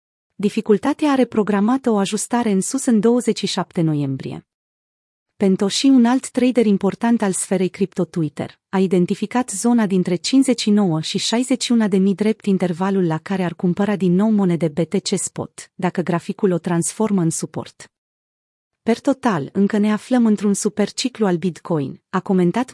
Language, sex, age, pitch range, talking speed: Romanian, female, 30-49, 180-225 Hz, 150 wpm